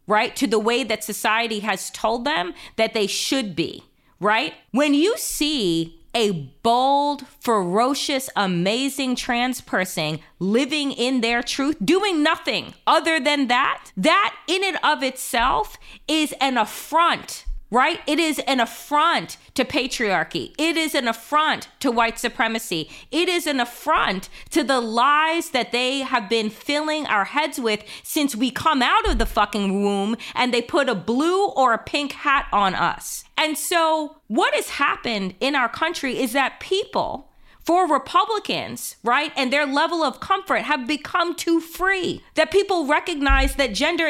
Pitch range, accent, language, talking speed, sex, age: 235-315 Hz, American, English, 160 wpm, female, 30-49